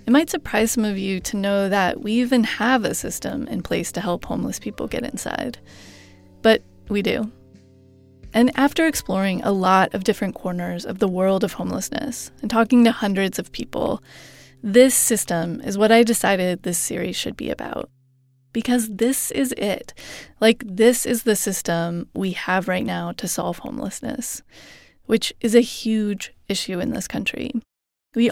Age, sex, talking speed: 20-39, female, 170 wpm